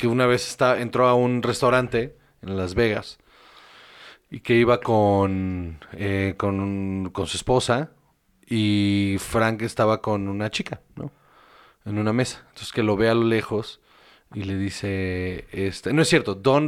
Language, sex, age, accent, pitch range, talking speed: Spanish, male, 30-49, Mexican, 100-120 Hz, 160 wpm